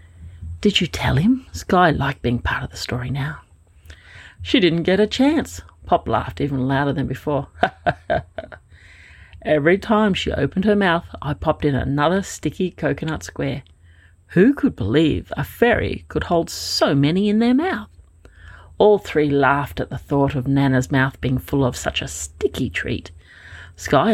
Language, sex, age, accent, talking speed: English, female, 40-59, Australian, 160 wpm